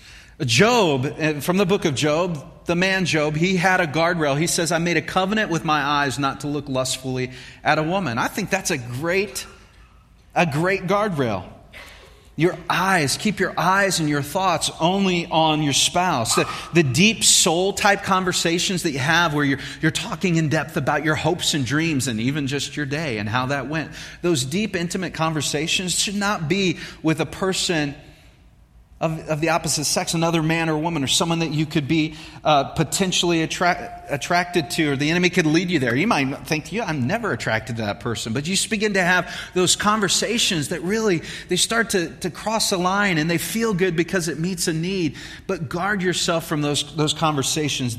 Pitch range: 145-180 Hz